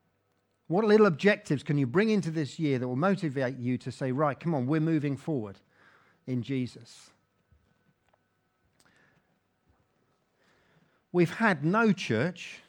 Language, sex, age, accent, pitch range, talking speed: English, male, 50-69, British, 145-200 Hz, 130 wpm